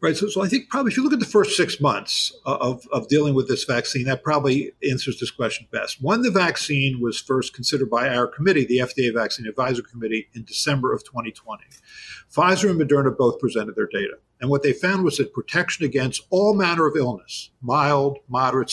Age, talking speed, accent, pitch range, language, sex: 50-69, 210 wpm, American, 130-175 Hz, English, male